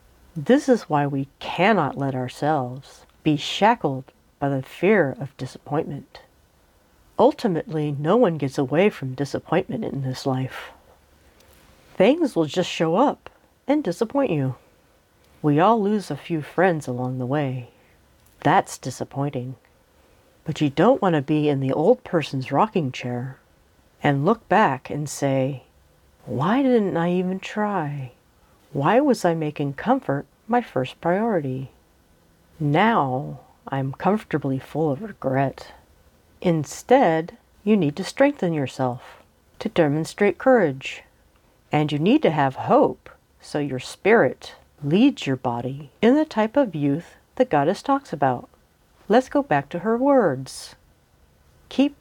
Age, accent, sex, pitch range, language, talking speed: 40-59, American, female, 130-195 Hz, English, 135 wpm